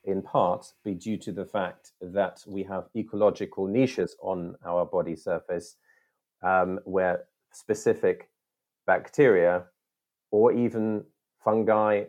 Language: English